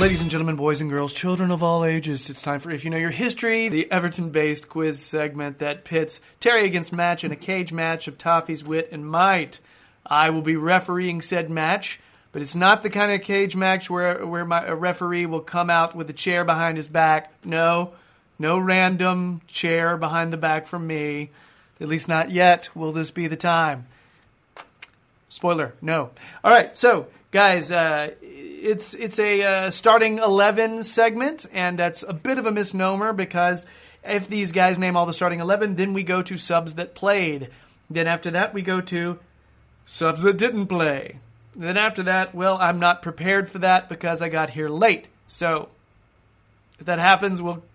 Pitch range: 160-195 Hz